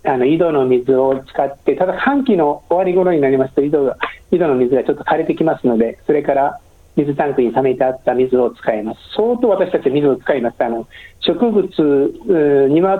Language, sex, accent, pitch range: Japanese, male, native, 130-175 Hz